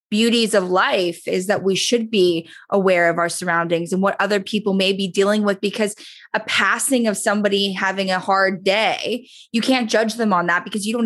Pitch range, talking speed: 185-230 Hz, 205 wpm